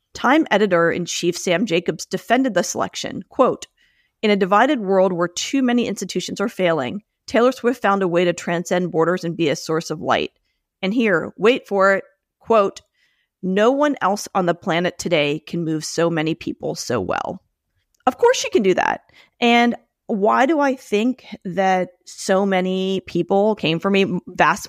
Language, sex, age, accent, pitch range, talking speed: English, female, 30-49, American, 175-235 Hz, 175 wpm